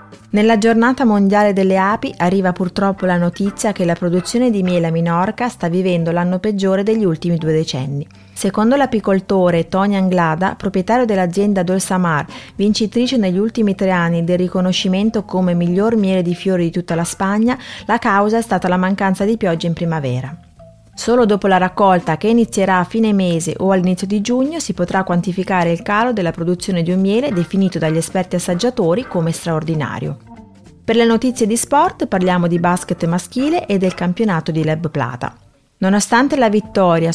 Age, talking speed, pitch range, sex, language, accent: 30-49, 170 wpm, 175-210 Hz, female, Italian, native